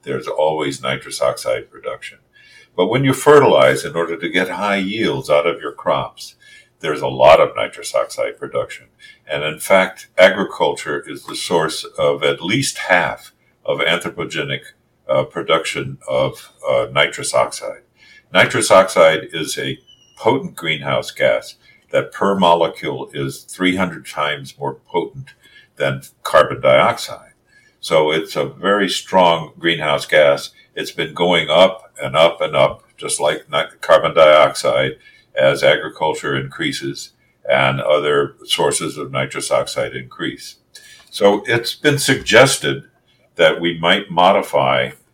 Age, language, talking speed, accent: 60-79, English, 135 wpm, American